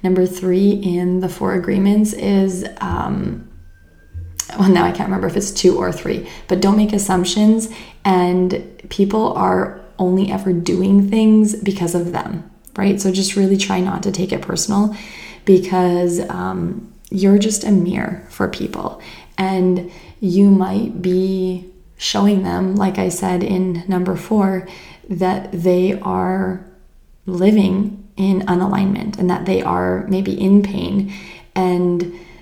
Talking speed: 140 wpm